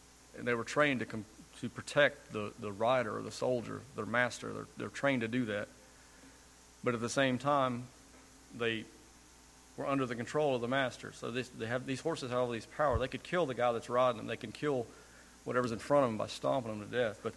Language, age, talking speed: English, 40-59, 230 wpm